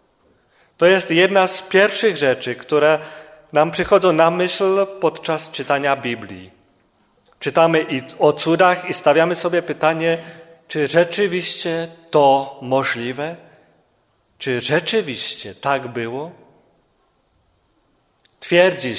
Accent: Polish